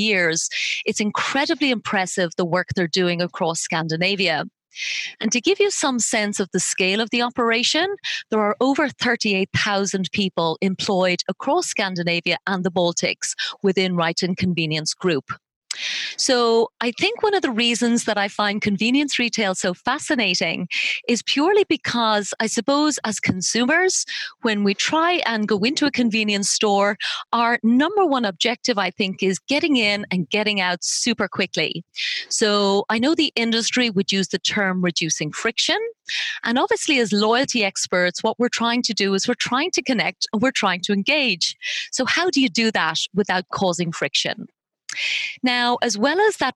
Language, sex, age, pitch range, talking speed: English, female, 30-49, 190-255 Hz, 160 wpm